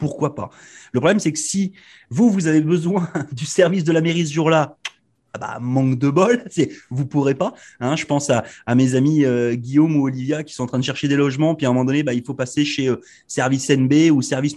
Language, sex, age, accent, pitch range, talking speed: French, male, 30-49, French, 130-185 Hz, 255 wpm